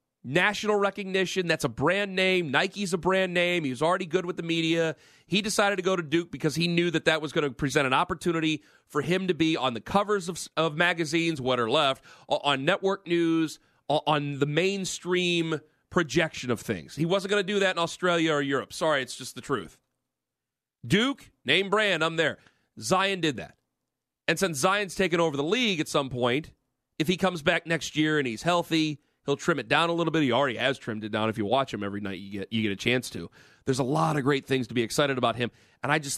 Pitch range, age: 140-185 Hz, 30-49